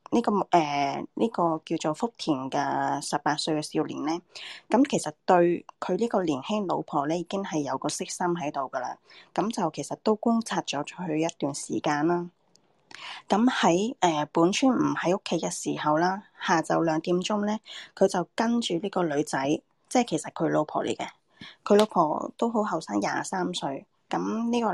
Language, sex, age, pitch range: Japanese, female, 20-39, 155-205 Hz